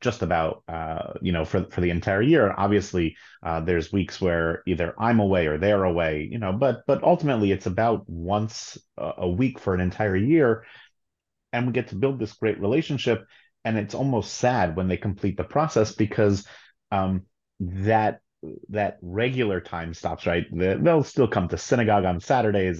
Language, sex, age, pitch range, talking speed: English, male, 30-49, 90-110 Hz, 175 wpm